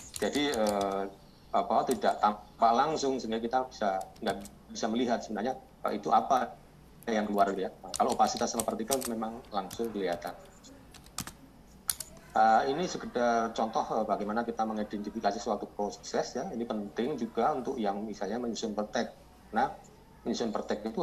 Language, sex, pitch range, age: Indonesian, male, 105-125 Hz, 30-49